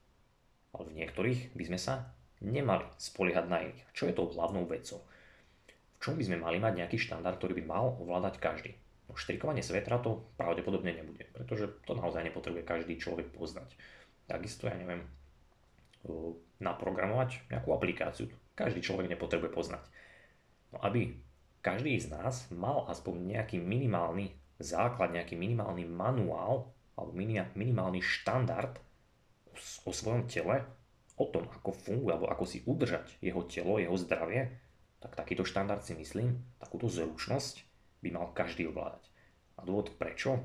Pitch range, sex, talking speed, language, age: 85-100 Hz, male, 140 wpm, Slovak, 30-49